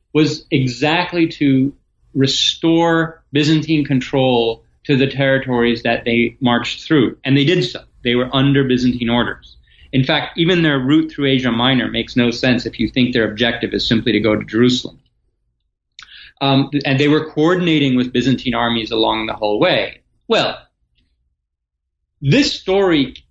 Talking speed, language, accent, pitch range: 150 wpm, English, American, 115-150 Hz